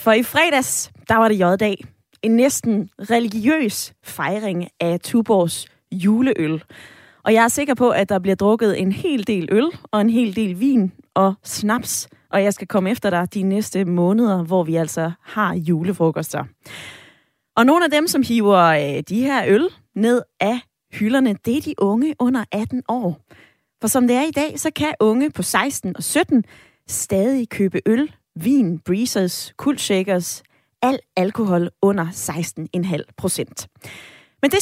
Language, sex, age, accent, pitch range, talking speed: Danish, female, 20-39, native, 185-245 Hz, 160 wpm